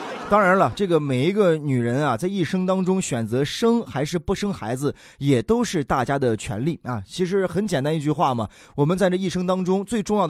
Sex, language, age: male, Chinese, 20-39